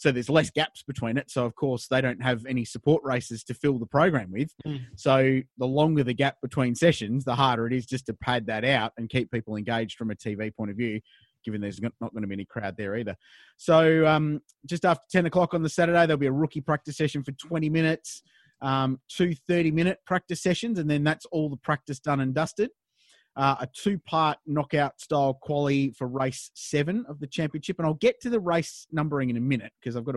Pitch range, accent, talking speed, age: 125-165 Hz, Australian, 225 wpm, 30-49